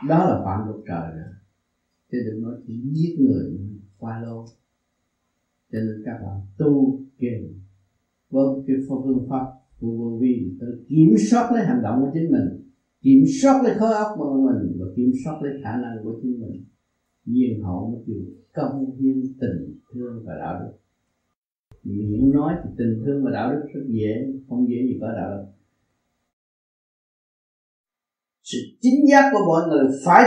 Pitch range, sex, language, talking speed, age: 110-170 Hz, male, Vietnamese, 165 wpm, 50-69